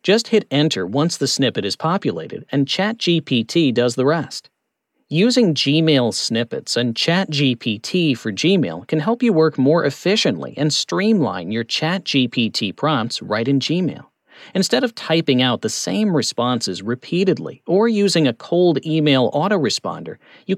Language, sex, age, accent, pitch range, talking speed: English, male, 40-59, American, 135-195 Hz, 145 wpm